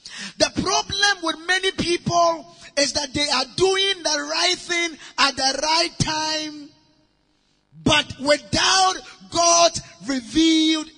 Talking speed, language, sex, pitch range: 115 wpm, English, male, 275-325 Hz